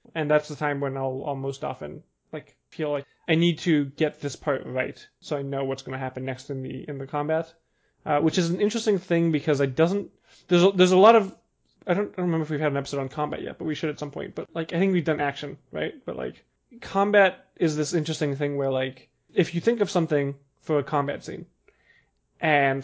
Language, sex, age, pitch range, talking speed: English, male, 20-39, 140-170 Hz, 240 wpm